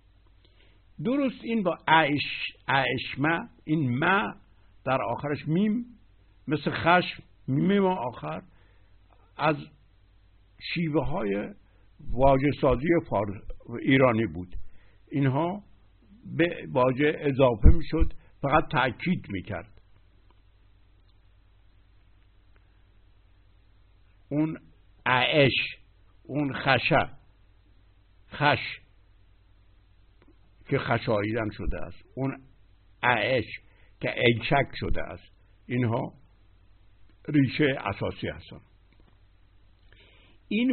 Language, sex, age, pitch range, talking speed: Persian, male, 60-79, 95-140 Hz, 75 wpm